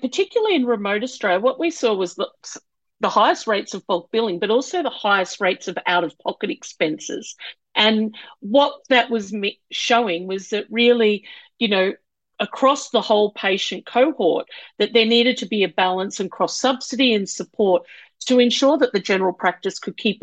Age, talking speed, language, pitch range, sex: 50-69, 180 wpm, Punjabi, 170-225 Hz, female